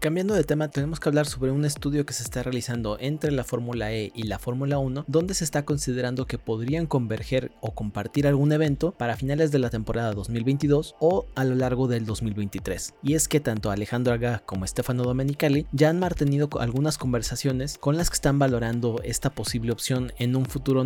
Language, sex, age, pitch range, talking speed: Spanish, male, 30-49, 115-140 Hz, 200 wpm